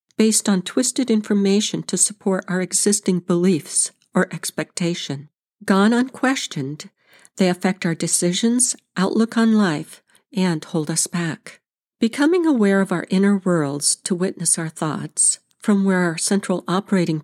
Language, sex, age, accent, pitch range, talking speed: English, female, 60-79, American, 175-220 Hz, 135 wpm